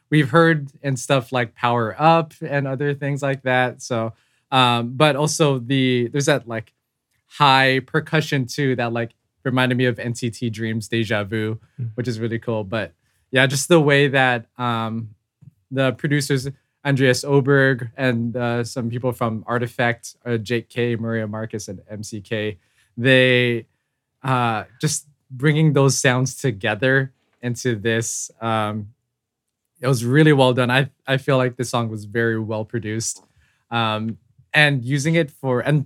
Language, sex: English, male